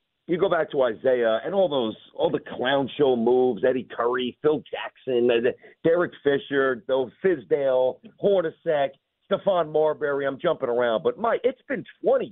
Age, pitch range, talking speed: 50-69, 135-210 Hz, 155 wpm